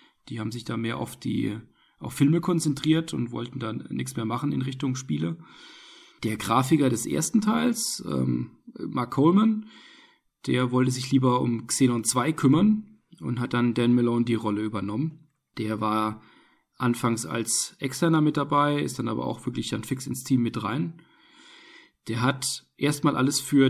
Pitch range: 115-145 Hz